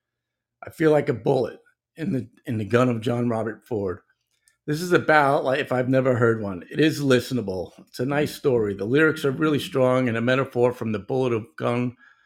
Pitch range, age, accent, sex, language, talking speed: 115-140 Hz, 50-69, American, male, English, 210 wpm